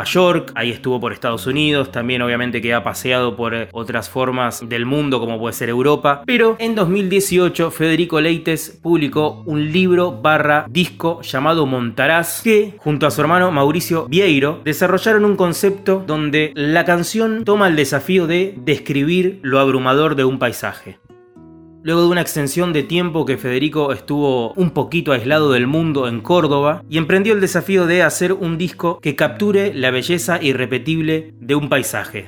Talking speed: 160 wpm